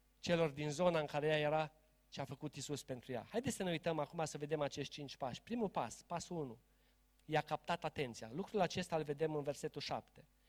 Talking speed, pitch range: 210 wpm, 160-245 Hz